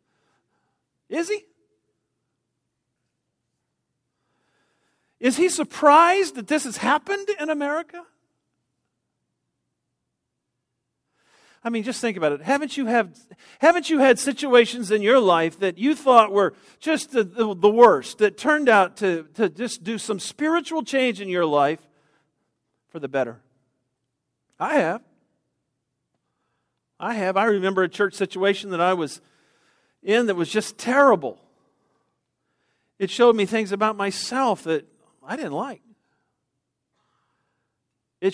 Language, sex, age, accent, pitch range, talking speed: English, male, 50-69, American, 165-270 Hz, 125 wpm